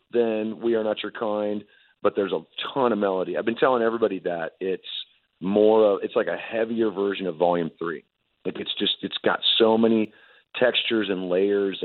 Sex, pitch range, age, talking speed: male, 95-110 Hz, 40-59, 195 wpm